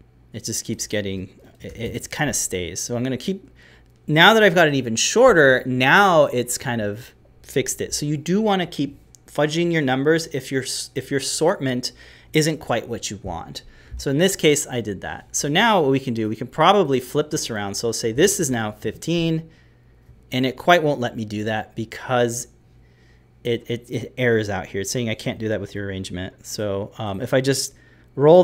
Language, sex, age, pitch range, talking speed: English, male, 30-49, 110-145 Hz, 215 wpm